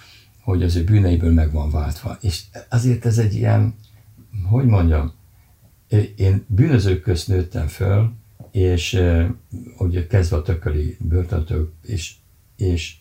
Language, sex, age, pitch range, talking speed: Hungarian, male, 60-79, 90-115 Hz, 130 wpm